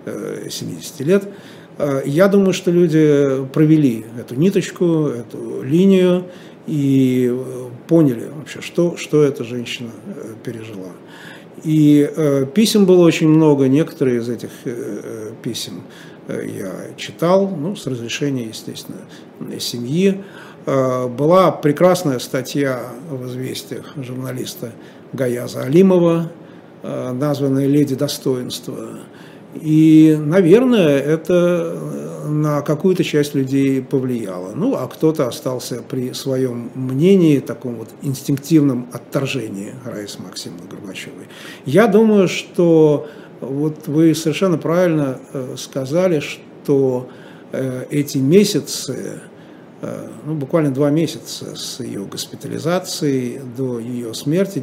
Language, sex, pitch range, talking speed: Russian, male, 130-165 Hz, 100 wpm